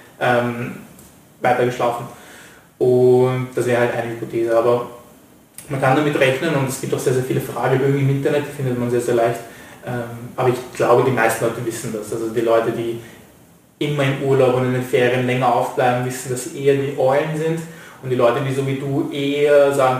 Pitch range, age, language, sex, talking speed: 125-135 Hz, 20-39, German, male, 200 wpm